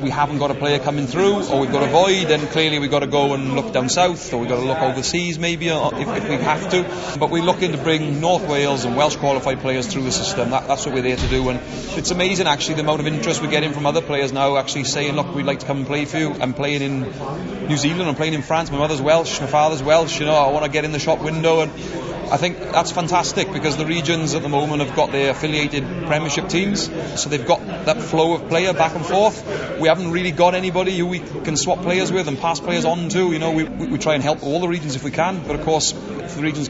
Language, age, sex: English, 30-49, male